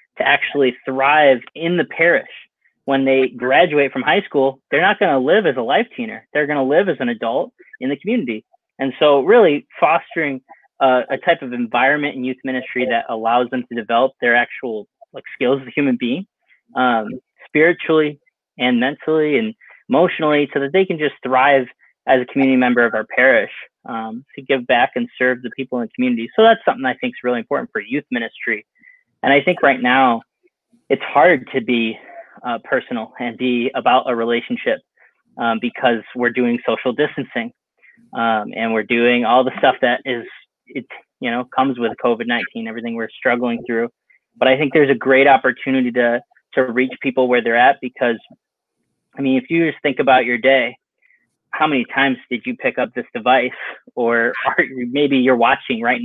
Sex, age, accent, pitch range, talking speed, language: male, 20-39, American, 120-150 Hz, 185 wpm, English